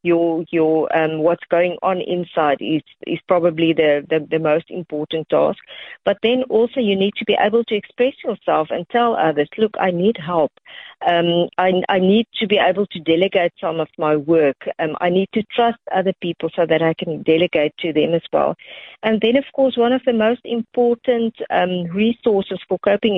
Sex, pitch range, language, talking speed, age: female, 170-215 Hz, English, 195 wpm, 50-69